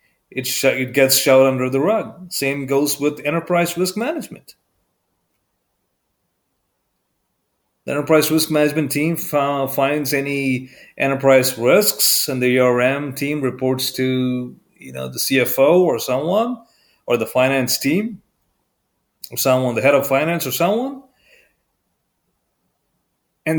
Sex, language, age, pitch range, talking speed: male, English, 30-49, 130-165 Hz, 115 wpm